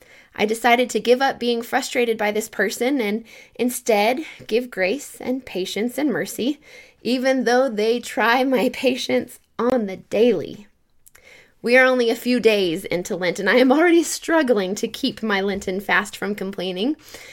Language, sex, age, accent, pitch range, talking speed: English, female, 20-39, American, 210-255 Hz, 165 wpm